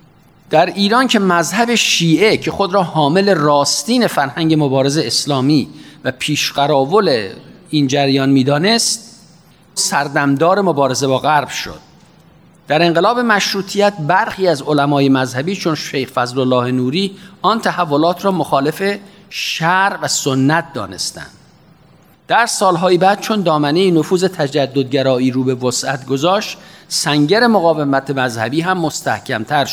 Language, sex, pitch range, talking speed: Persian, male, 140-185 Hz, 115 wpm